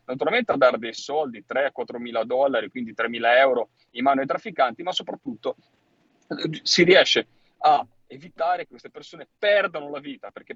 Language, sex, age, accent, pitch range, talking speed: Italian, male, 40-59, native, 115-150 Hz, 170 wpm